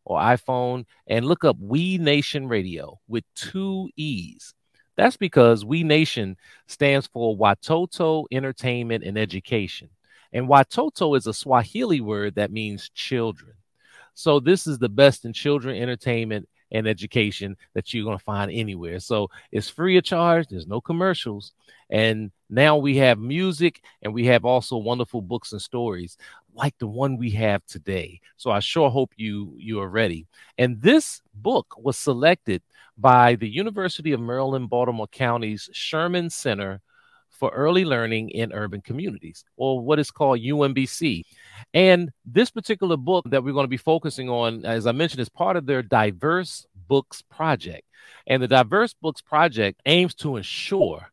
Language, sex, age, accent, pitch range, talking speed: English, male, 40-59, American, 110-150 Hz, 160 wpm